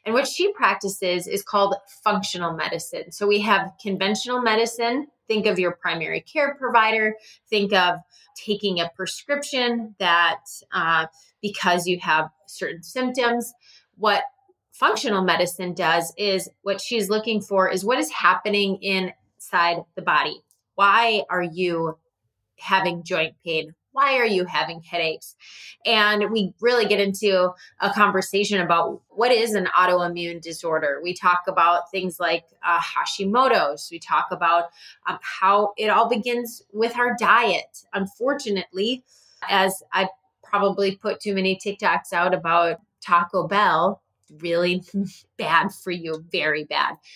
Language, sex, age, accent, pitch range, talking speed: English, female, 20-39, American, 175-220 Hz, 135 wpm